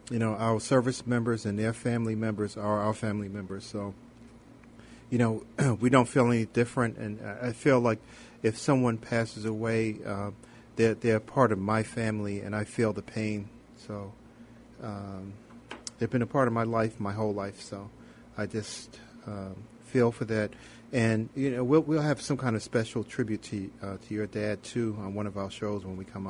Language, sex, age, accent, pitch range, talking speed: English, male, 40-59, American, 105-120 Hz, 195 wpm